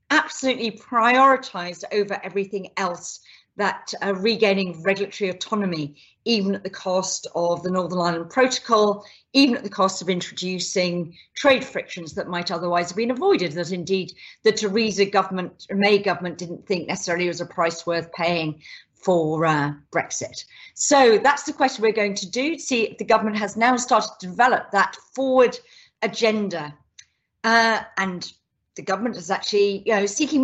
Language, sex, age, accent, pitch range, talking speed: English, female, 40-59, British, 185-245 Hz, 150 wpm